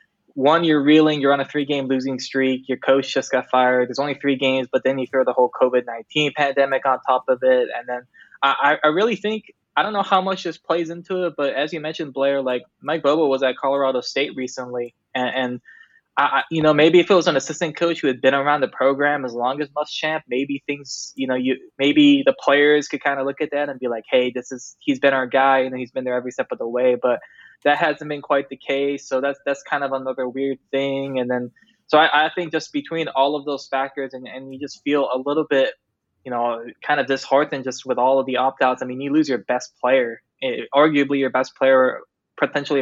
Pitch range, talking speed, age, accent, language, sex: 130-150 Hz, 250 wpm, 10-29, American, English, male